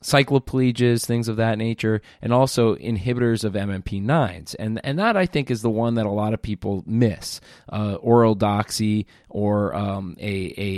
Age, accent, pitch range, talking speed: 20-39, American, 100-115 Hz, 180 wpm